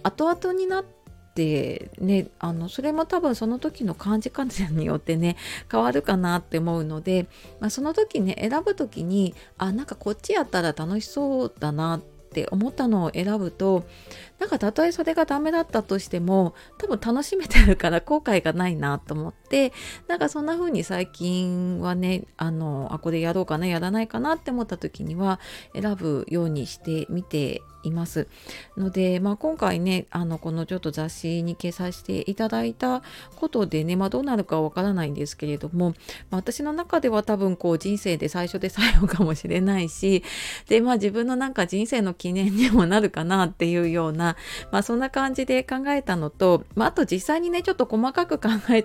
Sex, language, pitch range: female, Japanese, 165-230 Hz